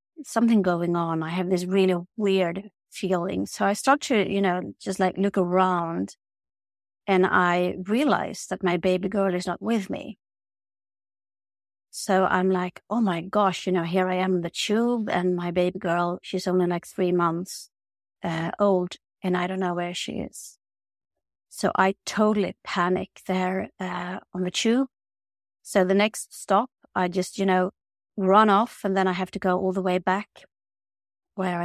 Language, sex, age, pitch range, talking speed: English, female, 30-49, 175-200 Hz, 175 wpm